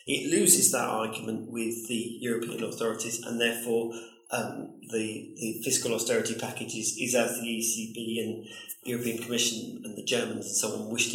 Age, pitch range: 40-59, 115-145 Hz